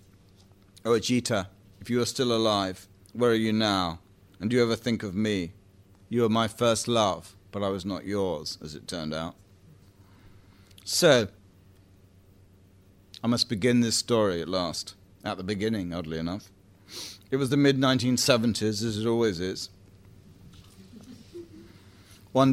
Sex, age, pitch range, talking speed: male, 40-59, 95-115 Hz, 145 wpm